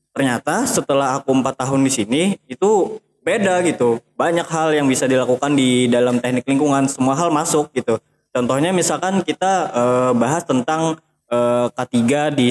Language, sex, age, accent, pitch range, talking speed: Indonesian, male, 20-39, native, 120-150 Hz, 155 wpm